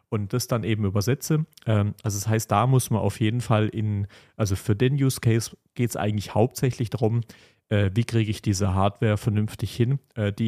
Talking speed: 190 wpm